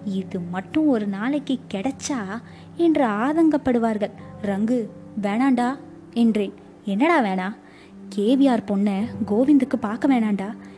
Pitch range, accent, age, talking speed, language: 200-260 Hz, native, 20-39, 95 wpm, Tamil